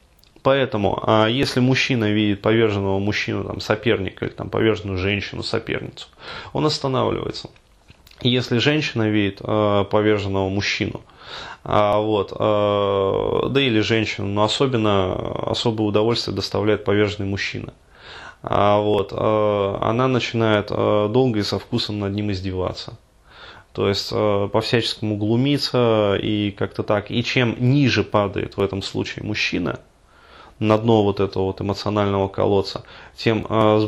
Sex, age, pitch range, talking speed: male, 20-39, 100-115 Hz, 115 wpm